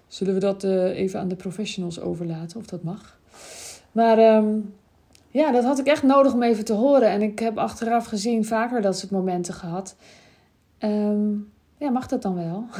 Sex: female